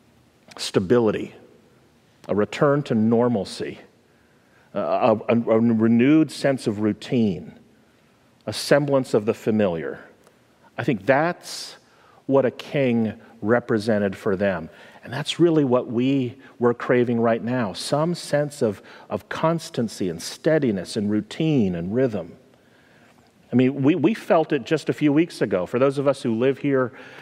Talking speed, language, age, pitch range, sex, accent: 140 wpm, English, 40-59, 115-150 Hz, male, American